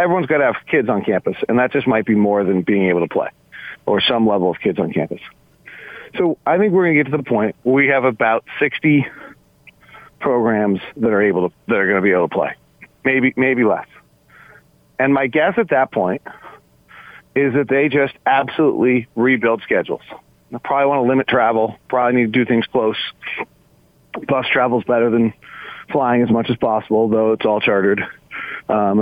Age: 40-59